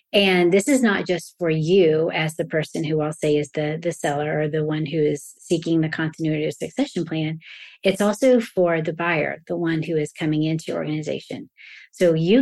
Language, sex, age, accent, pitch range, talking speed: English, female, 30-49, American, 155-190 Hz, 210 wpm